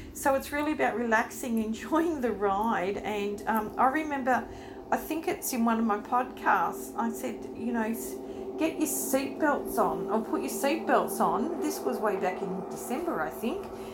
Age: 40-59